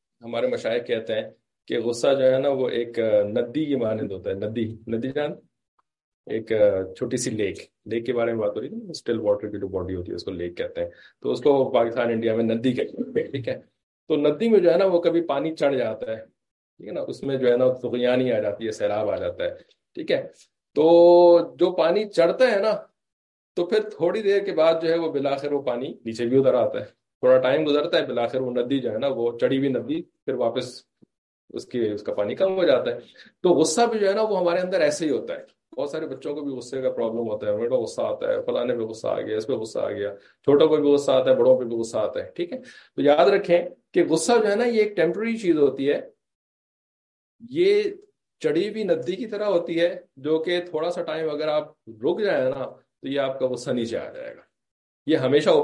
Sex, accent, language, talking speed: male, Indian, English, 140 wpm